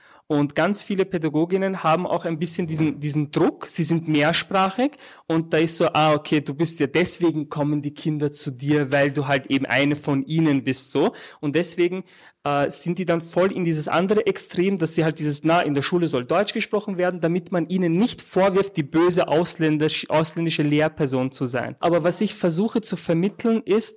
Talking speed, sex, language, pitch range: 195 wpm, male, German, 150-195 Hz